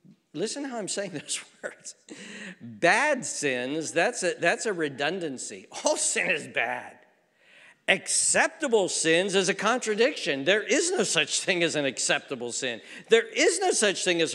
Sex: male